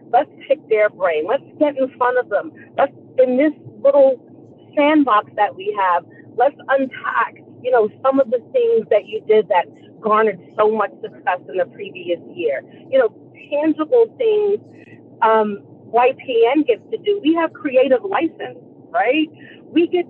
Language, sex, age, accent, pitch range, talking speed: English, female, 40-59, American, 205-295 Hz, 160 wpm